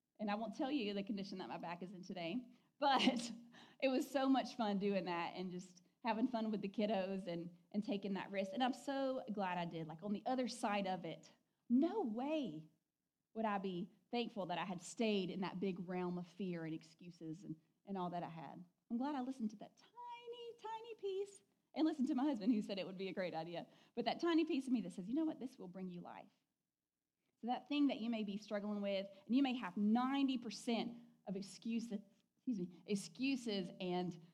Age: 30-49